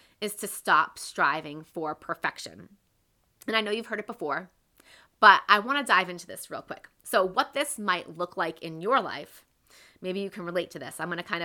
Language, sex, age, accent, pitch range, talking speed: English, female, 20-39, American, 175-225 Hz, 215 wpm